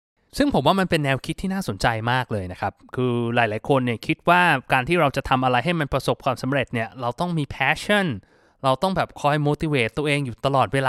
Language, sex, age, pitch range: Thai, male, 20-39, 130-175 Hz